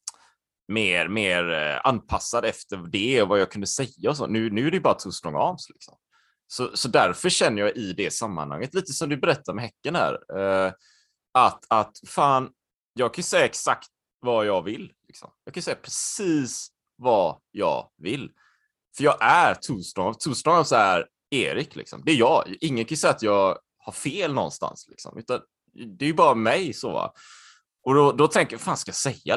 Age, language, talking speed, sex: 20-39, Swedish, 170 wpm, male